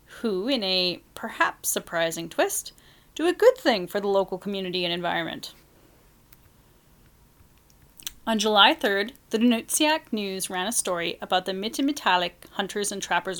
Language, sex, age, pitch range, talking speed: English, female, 30-49, 185-255 Hz, 140 wpm